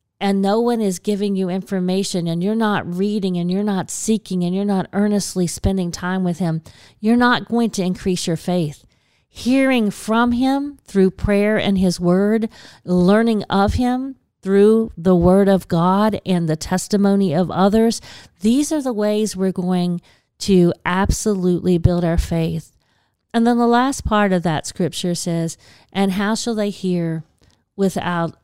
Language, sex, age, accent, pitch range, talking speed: English, female, 40-59, American, 175-205 Hz, 160 wpm